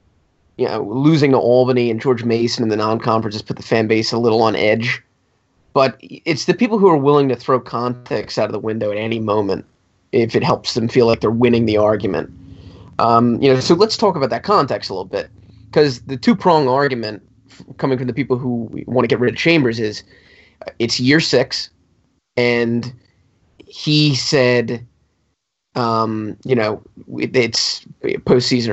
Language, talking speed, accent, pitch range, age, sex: English, 180 wpm, American, 115-150 Hz, 20-39, male